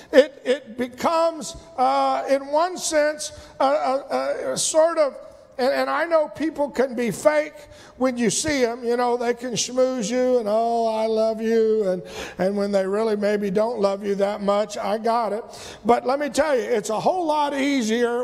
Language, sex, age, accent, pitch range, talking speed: English, male, 50-69, American, 200-300 Hz, 195 wpm